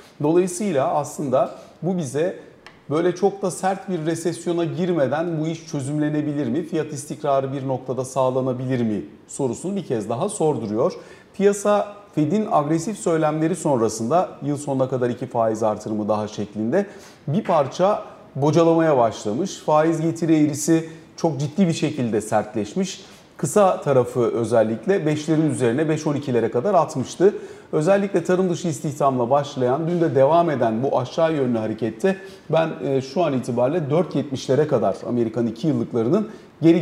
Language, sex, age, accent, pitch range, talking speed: Turkish, male, 40-59, native, 125-175 Hz, 135 wpm